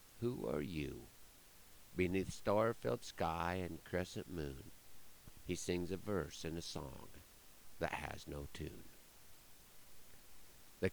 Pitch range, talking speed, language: 85-110 Hz, 115 wpm, English